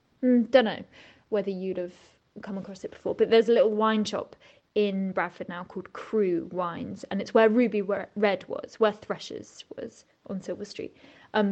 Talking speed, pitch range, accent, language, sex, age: 180 wpm, 180-215 Hz, British, English, female, 20-39